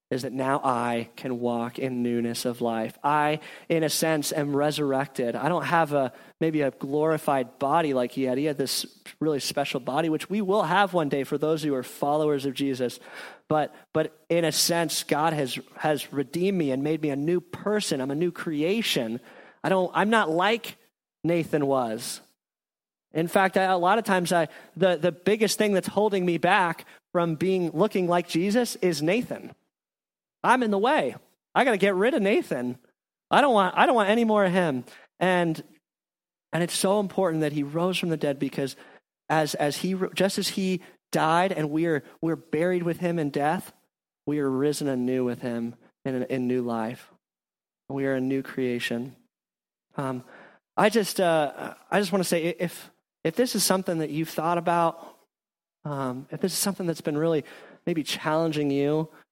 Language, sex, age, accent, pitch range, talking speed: English, male, 30-49, American, 135-180 Hz, 190 wpm